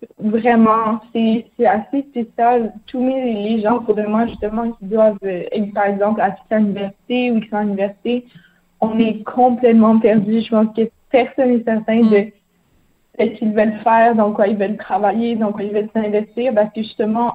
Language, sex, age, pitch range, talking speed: French, female, 20-39, 205-235 Hz, 180 wpm